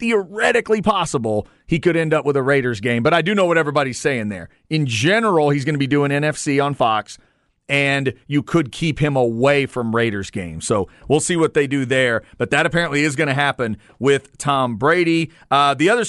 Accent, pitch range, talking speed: American, 135-180 Hz, 215 wpm